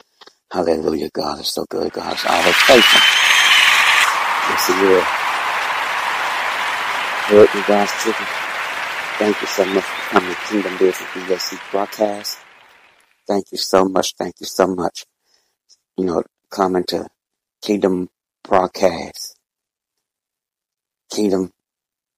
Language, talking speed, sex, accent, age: English, 95 wpm, male, American, 60-79